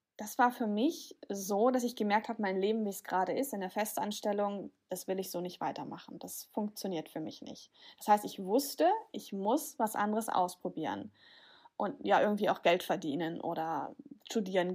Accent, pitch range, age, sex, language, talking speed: German, 195-240 Hz, 10-29, female, German, 185 wpm